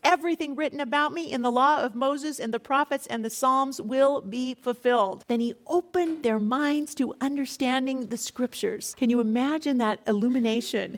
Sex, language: female, English